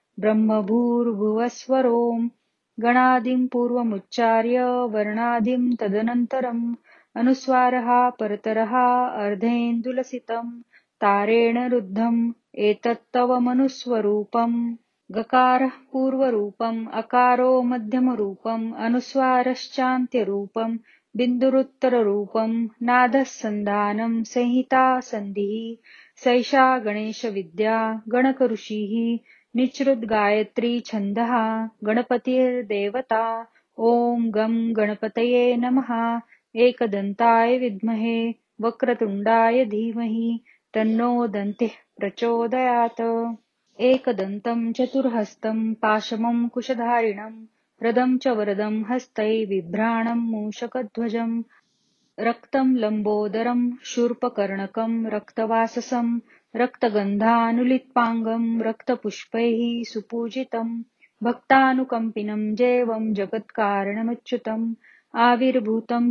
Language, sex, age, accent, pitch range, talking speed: Marathi, female, 30-49, native, 220-245 Hz, 50 wpm